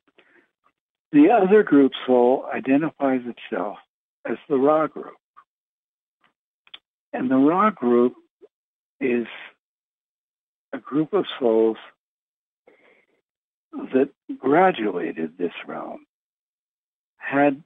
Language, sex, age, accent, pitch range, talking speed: English, male, 60-79, American, 120-160 Hz, 80 wpm